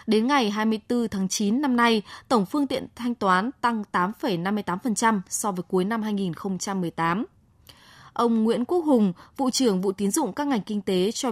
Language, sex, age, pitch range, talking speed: Vietnamese, female, 20-39, 205-255 Hz, 175 wpm